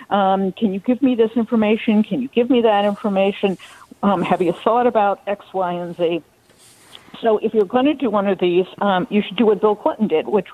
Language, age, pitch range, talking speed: English, 50-69, 200-245 Hz, 230 wpm